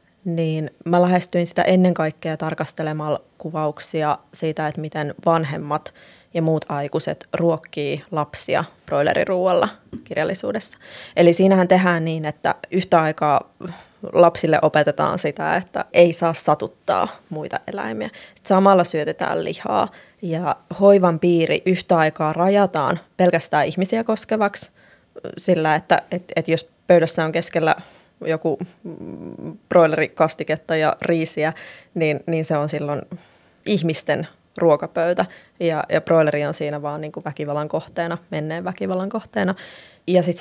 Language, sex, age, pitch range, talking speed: Finnish, female, 20-39, 155-180 Hz, 120 wpm